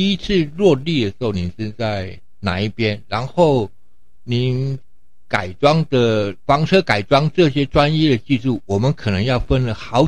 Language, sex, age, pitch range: Chinese, male, 60-79, 100-140 Hz